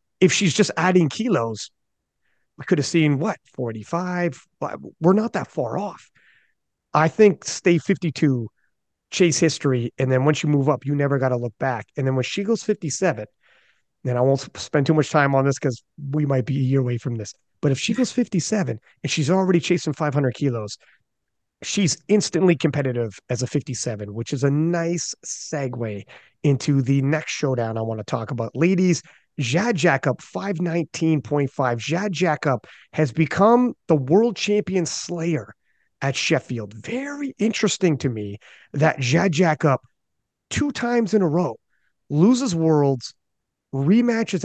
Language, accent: English, American